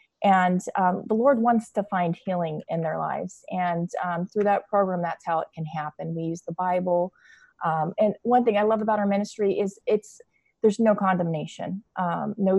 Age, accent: 30-49, American